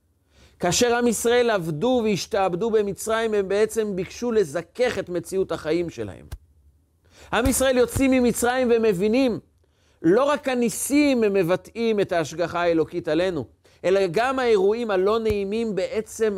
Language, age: Hebrew, 40-59